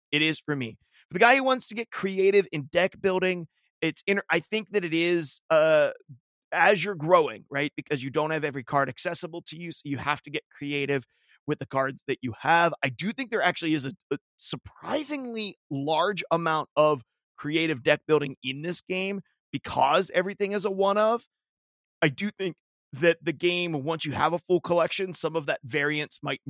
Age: 30-49